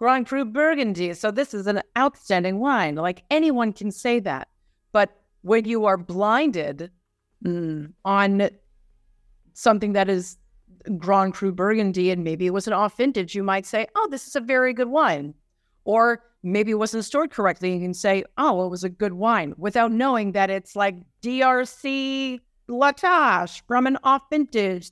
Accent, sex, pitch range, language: American, female, 180-245 Hz, English